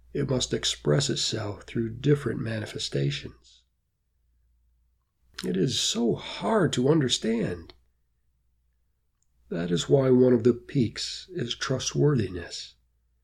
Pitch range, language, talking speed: 80-130 Hz, English, 100 wpm